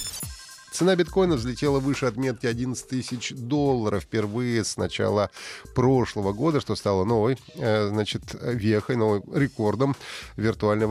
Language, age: Russian, 30-49